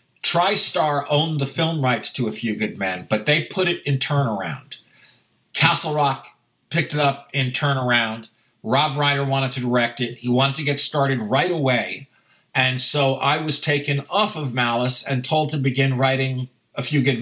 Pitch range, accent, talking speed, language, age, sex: 125-150 Hz, American, 180 wpm, English, 50-69, male